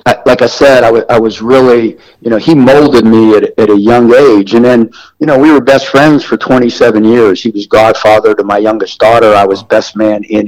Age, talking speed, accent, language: 50-69, 240 wpm, American, English